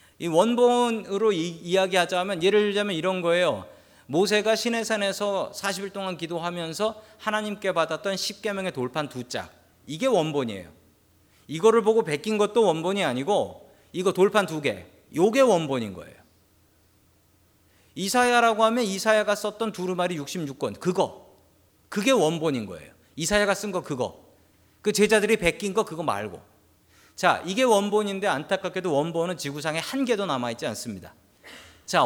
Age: 40-59